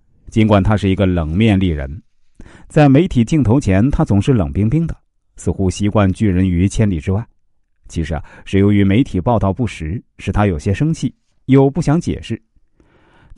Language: Chinese